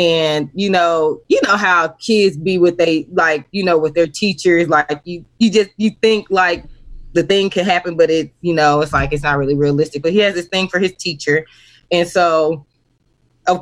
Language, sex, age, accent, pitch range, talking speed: English, female, 20-39, American, 160-195 Hz, 210 wpm